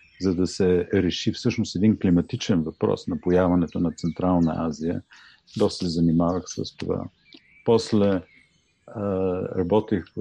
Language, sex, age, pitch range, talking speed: Bulgarian, male, 50-69, 90-110 Hz, 125 wpm